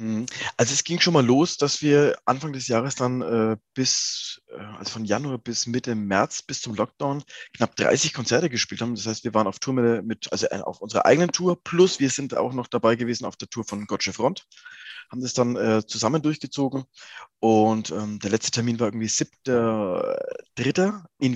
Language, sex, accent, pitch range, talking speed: German, male, German, 110-140 Hz, 200 wpm